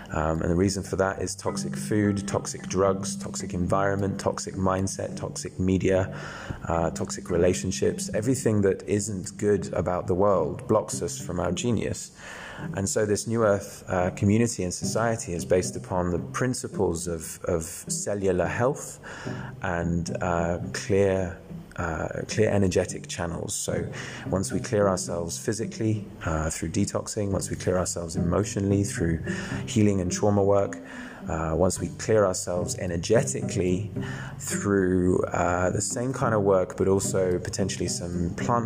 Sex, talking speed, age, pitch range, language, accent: male, 145 wpm, 20-39, 85-100 Hz, English, British